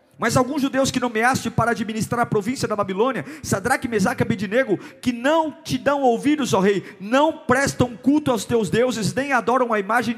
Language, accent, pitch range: Portuguese, Brazilian, 205-275 Hz